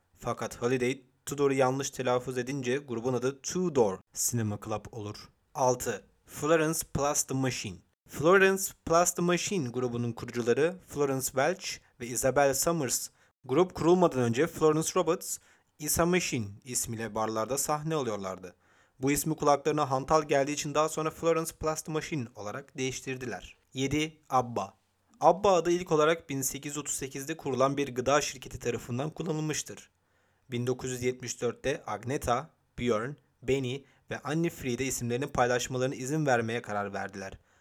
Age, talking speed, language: 30-49, 125 wpm, Turkish